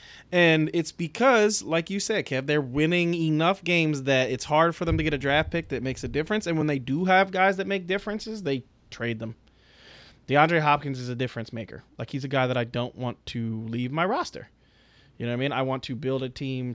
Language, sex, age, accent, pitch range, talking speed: English, male, 20-39, American, 125-180 Hz, 235 wpm